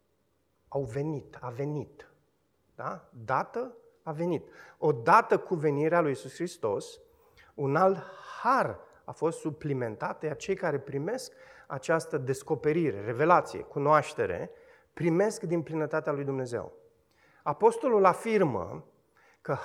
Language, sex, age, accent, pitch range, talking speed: Romanian, male, 30-49, native, 145-200 Hz, 115 wpm